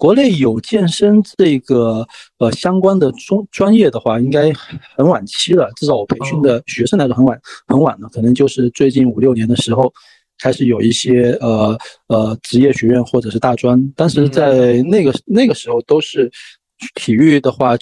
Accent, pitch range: native, 120-140 Hz